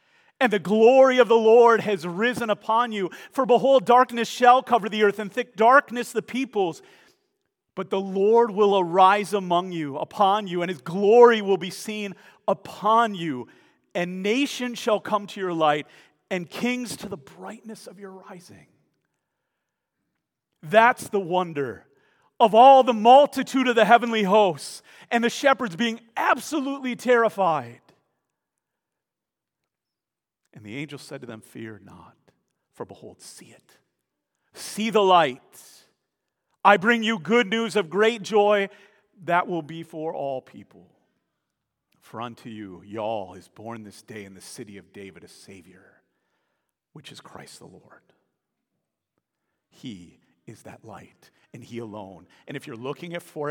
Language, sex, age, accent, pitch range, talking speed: English, male, 40-59, American, 155-235 Hz, 150 wpm